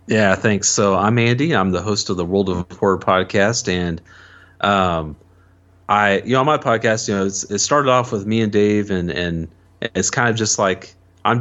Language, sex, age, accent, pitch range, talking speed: English, male, 30-49, American, 95-115 Hz, 200 wpm